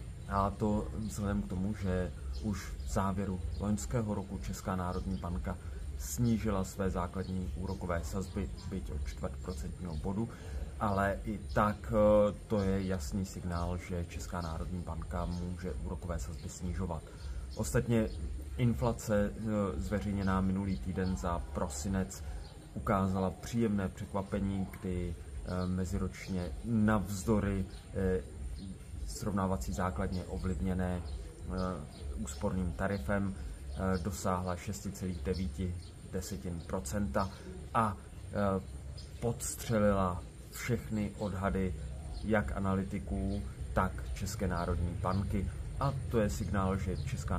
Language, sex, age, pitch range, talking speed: Czech, male, 30-49, 90-105 Hz, 100 wpm